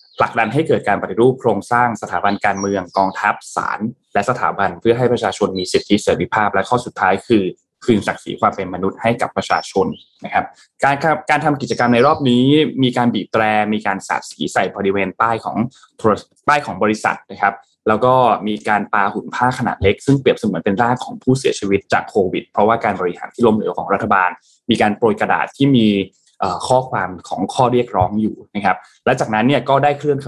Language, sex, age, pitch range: Thai, male, 20-39, 100-135 Hz